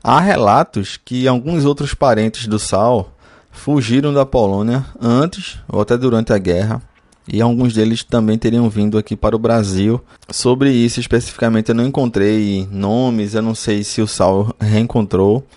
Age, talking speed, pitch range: 20-39, 160 wpm, 105-120 Hz